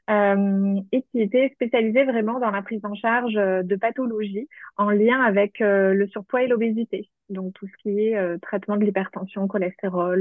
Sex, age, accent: female, 20-39, French